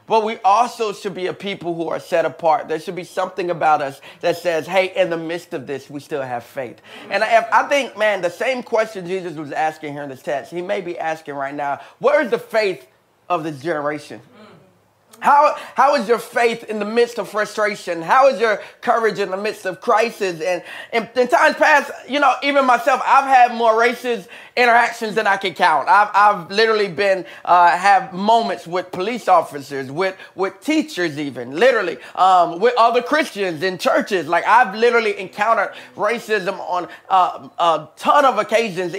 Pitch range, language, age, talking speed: 175-230 Hz, English, 30-49, 190 wpm